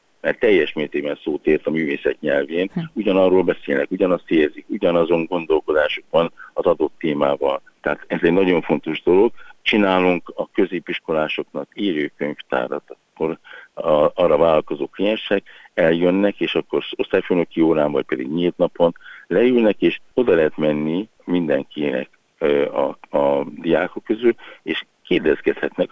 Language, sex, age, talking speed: Hungarian, male, 60-79, 125 wpm